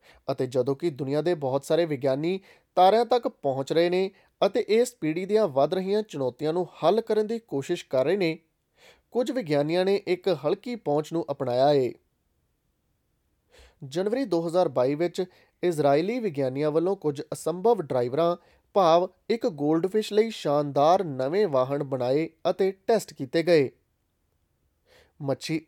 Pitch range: 140-195 Hz